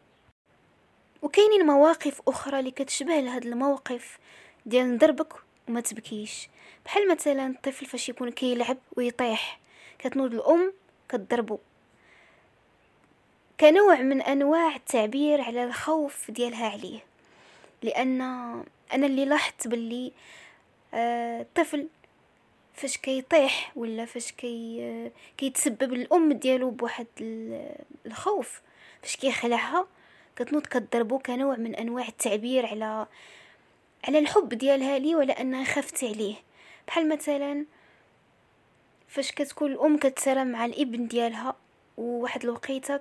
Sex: female